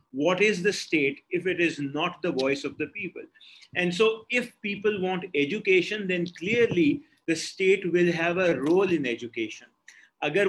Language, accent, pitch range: English, Indian, 145-185 Hz